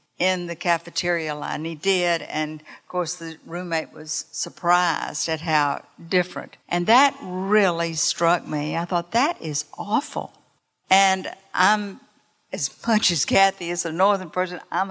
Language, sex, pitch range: English, female, 165-195 Hz